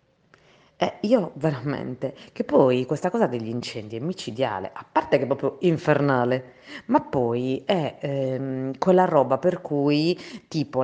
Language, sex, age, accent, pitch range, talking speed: Italian, female, 30-49, native, 135-170 Hz, 145 wpm